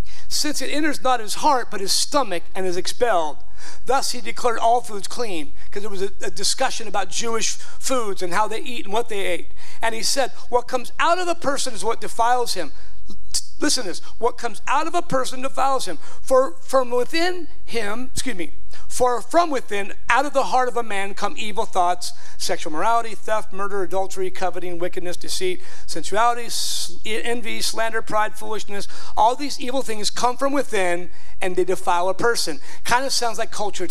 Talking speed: 190 wpm